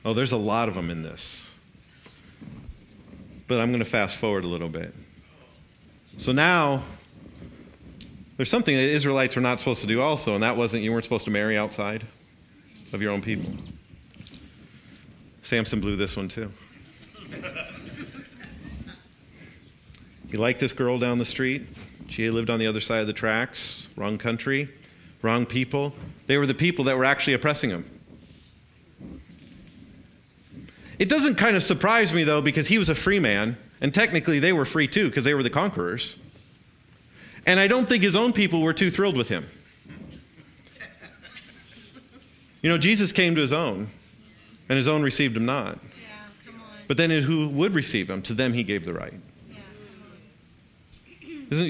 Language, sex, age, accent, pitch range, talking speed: English, male, 40-59, American, 115-175 Hz, 160 wpm